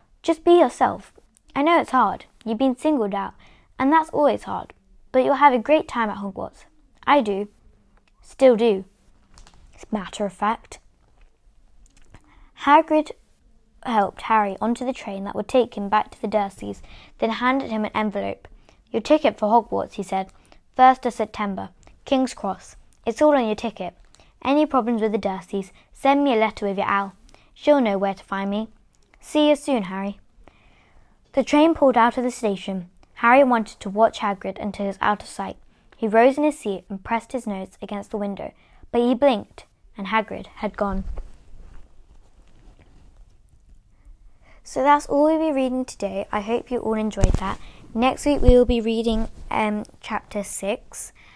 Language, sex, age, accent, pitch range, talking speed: English, female, 10-29, British, 200-260 Hz, 170 wpm